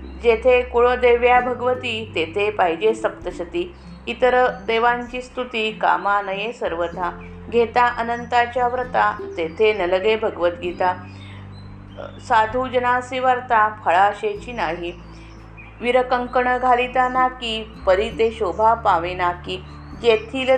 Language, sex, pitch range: Marathi, female, 180-245 Hz